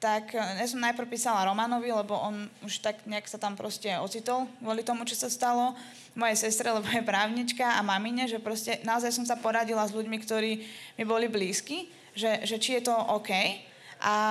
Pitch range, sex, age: 210-235 Hz, female, 20-39